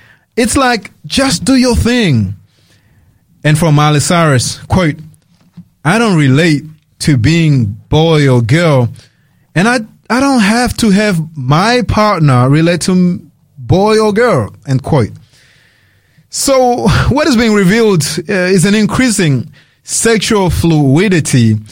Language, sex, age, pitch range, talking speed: English, male, 30-49, 145-200 Hz, 125 wpm